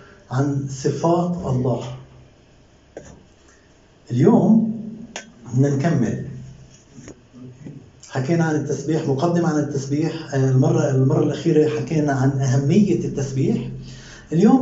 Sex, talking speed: male, 80 wpm